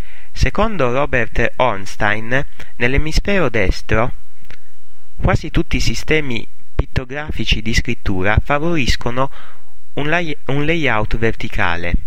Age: 30-49